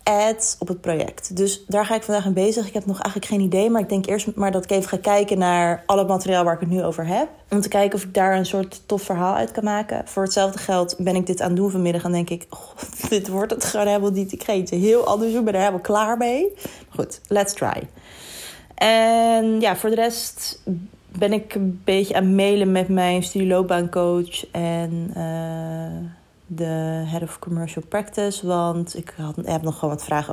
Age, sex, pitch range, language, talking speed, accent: 30-49, female, 170-200 Hz, Dutch, 225 wpm, Dutch